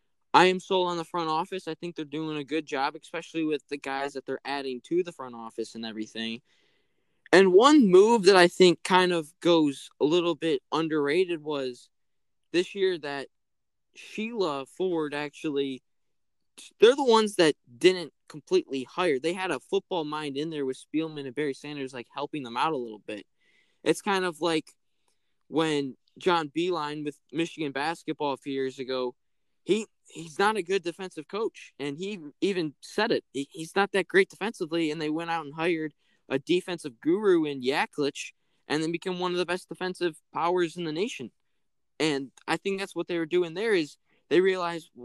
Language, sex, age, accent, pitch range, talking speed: English, male, 10-29, American, 145-185 Hz, 185 wpm